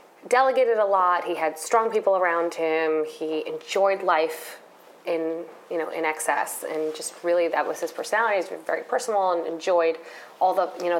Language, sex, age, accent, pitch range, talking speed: English, female, 30-49, American, 165-210 Hz, 185 wpm